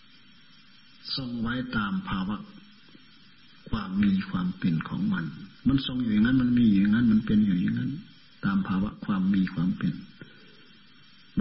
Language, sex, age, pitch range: Thai, male, 60-79, 145-215 Hz